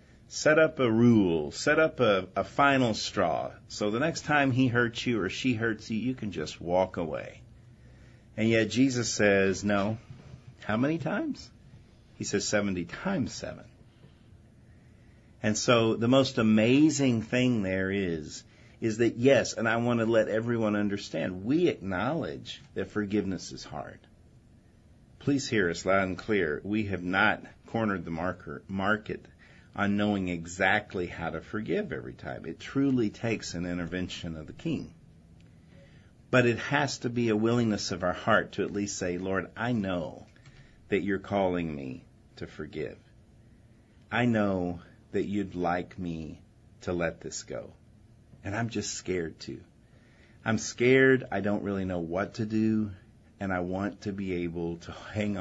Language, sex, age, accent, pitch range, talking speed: English, male, 50-69, American, 90-115 Hz, 160 wpm